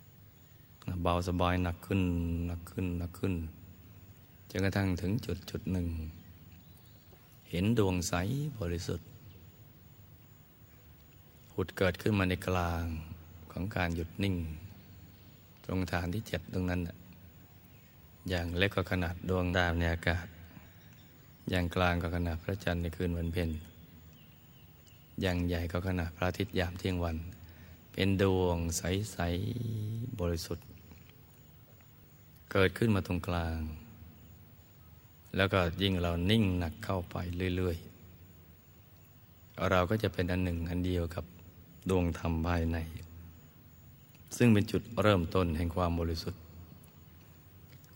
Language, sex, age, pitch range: Thai, male, 20-39, 85-95 Hz